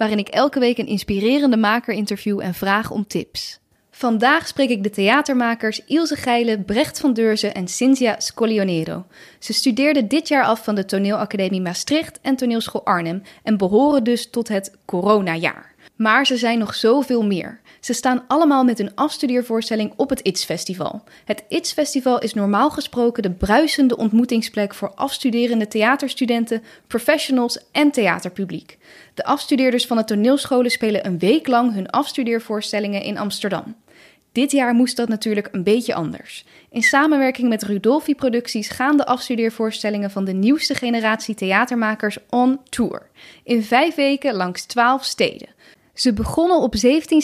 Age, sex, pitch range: 10-29, female, 210-265 Hz